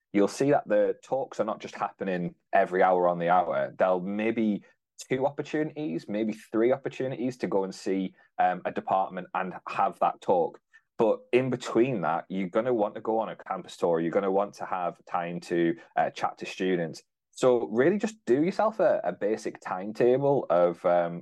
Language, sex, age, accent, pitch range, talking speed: English, male, 20-39, British, 90-140 Hz, 195 wpm